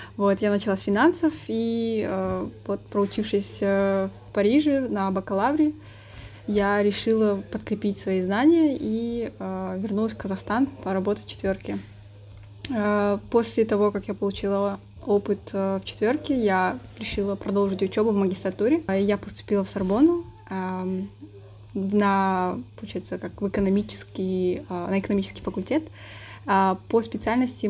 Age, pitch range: 20-39, 190-215 Hz